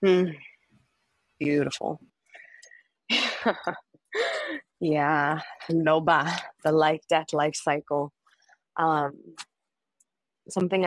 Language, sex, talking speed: English, female, 60 wpm